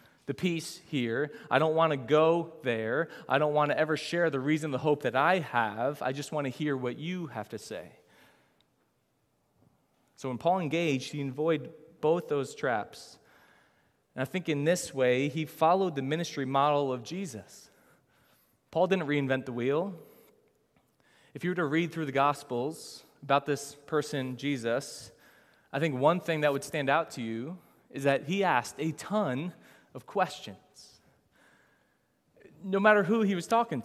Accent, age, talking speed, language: American, 20-39, 170 wpm, English